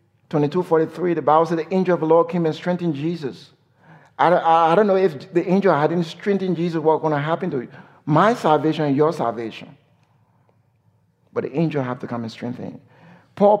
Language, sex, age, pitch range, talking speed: English, male, 60-79, 125-165 Hz, 205 wpm